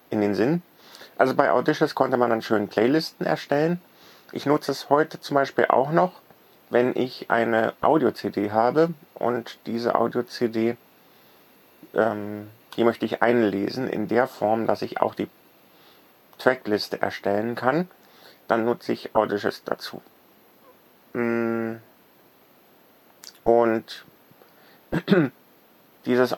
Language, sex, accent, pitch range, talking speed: German, male, German, 110-135 Hz, 110 wpm